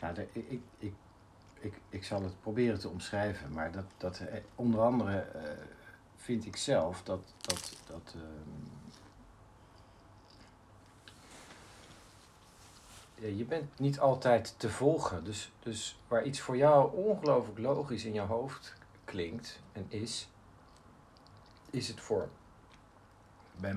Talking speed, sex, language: 115 wpm, male, Dutch